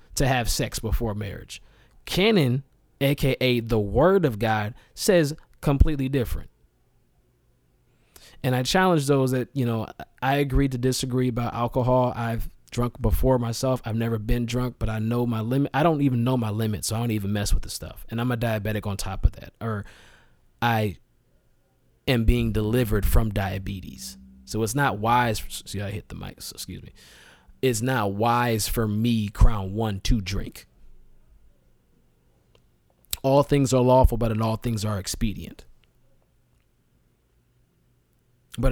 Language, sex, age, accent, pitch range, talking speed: English, male, 20-39, American, 95-125 Hz, 155 wpm